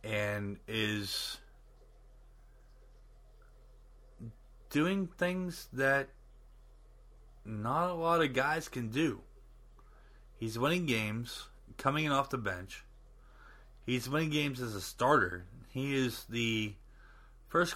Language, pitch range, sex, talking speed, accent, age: English, 105-150 Hz, male, 100 wpm, American, 30-49